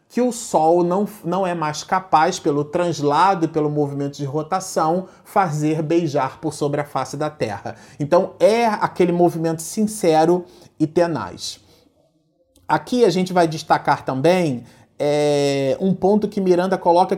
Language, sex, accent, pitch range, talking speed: Portuguese, male, Brazilian, 140-190 Hz, 145 wpm